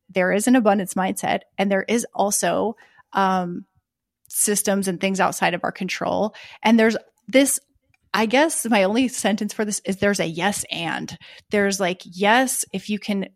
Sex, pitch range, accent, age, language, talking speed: female, 190-240 Hz, American, 30-49, English, 170 wpm